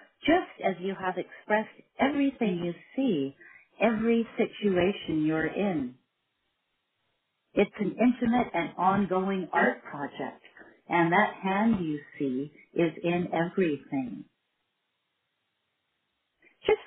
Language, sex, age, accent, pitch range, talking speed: English, female, 50-69, American, 165-240 Hz, 100 wpm